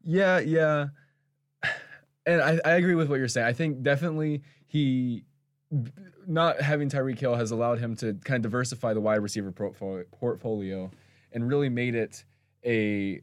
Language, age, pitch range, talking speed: English, 20-39, 110-140 Hz, 155 wpm